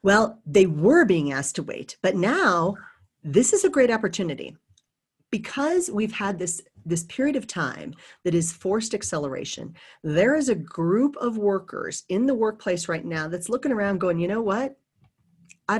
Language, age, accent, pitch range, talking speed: English, 40-59, American, 165-210 Hz, 170 wpm